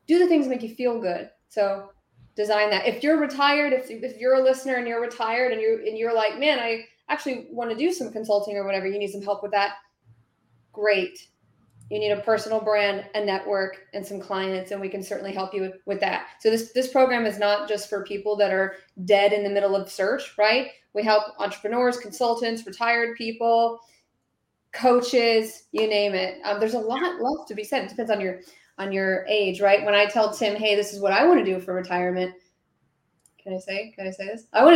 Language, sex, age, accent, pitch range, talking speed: English, female, 20-39, American, 195-245 Hz, 225 wpm